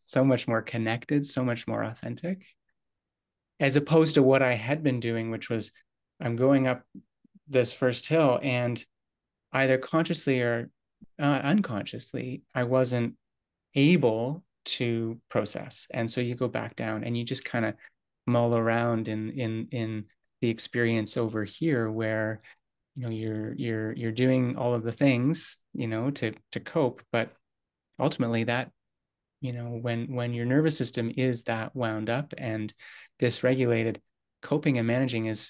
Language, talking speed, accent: English, 155 wpm, American